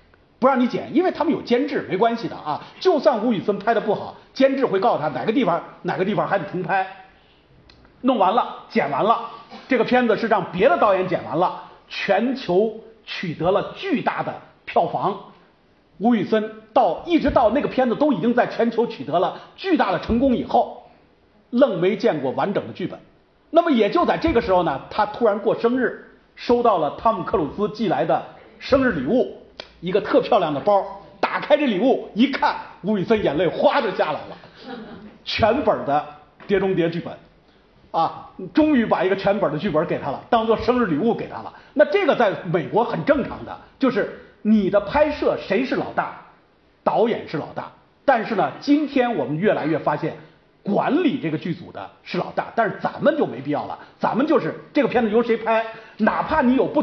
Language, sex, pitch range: Chinese, male, 190-255 Hz